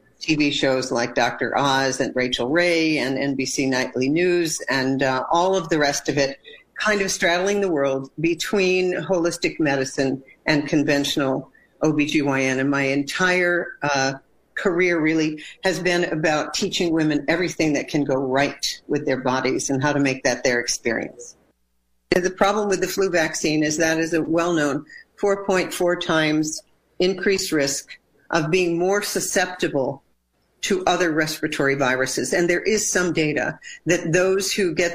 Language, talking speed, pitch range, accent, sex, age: English, 155 wpm, 140-180 Hz, American, female, 50-69